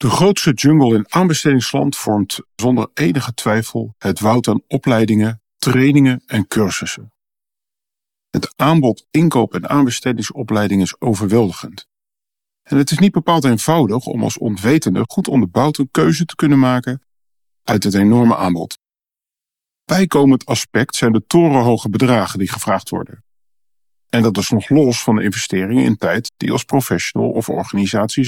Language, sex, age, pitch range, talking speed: Dutch, male, 40-59, 110-145 Hz, 140 wpm